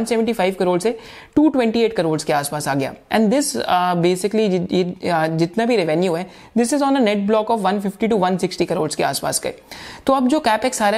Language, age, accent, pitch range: Hindi, 30-49, native, 185-245 Hz